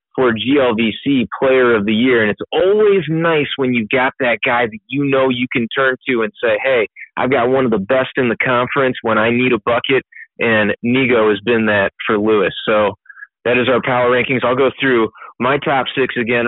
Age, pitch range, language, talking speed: 30-49, 110-130 Hz, English, 215 wpm